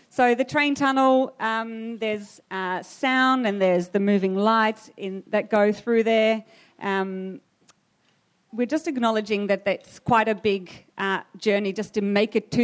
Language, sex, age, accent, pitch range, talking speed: English, female, 40-59, Australian, 195-230 Hz, 160 wpm